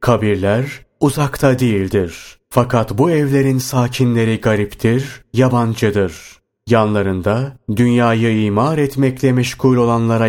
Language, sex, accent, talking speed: Turkish, male, native, 85 wpm